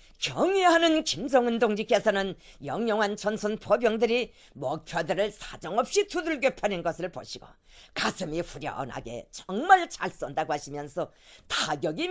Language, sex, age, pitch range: Korean, female, 40-59, 190-315 Hz